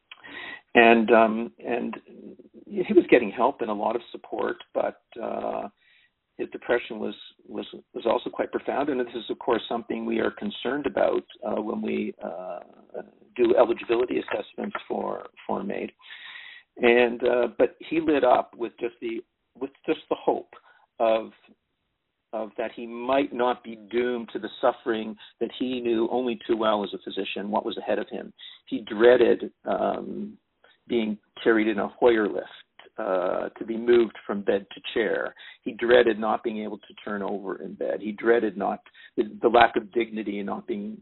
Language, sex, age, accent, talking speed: English, male, 50-69, American, 175 wpm